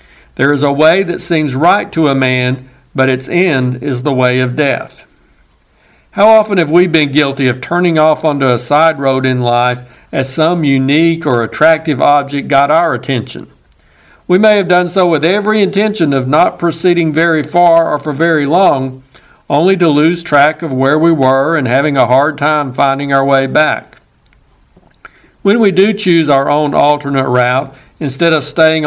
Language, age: English, 60-79